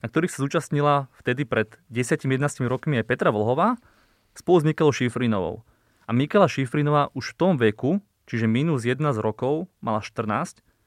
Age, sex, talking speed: 20-39, male, 155 wpm